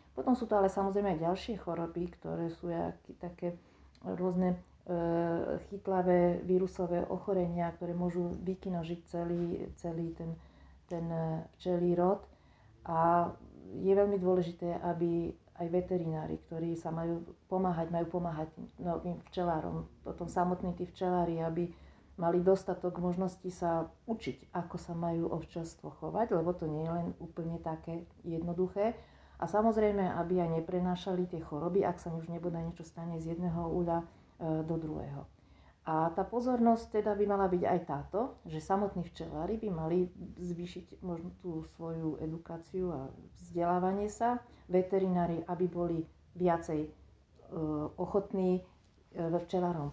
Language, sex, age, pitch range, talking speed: Slovak, female, 40-59, 170-185 Hz, 130 wpm